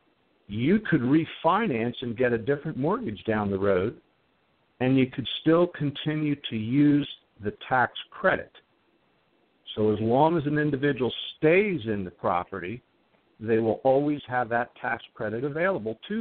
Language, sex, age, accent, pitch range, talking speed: English, male, 50-69, American, 115-145 Hz, 150 wpm